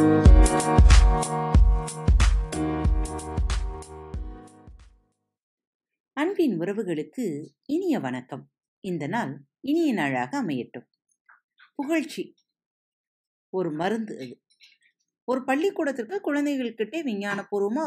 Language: Tamil